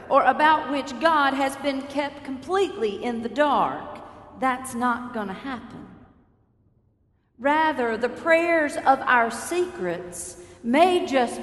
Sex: female